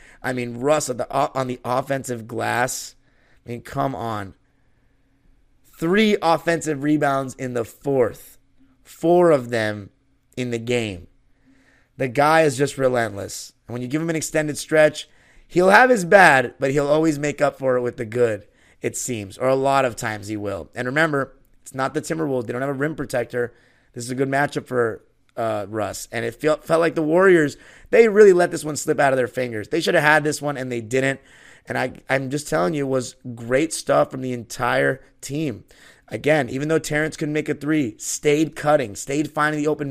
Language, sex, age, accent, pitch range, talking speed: English, male, 30-49, American, 125-155 Hz, 200 wpm